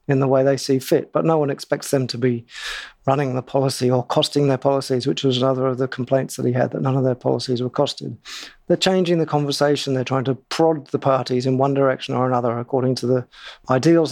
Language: English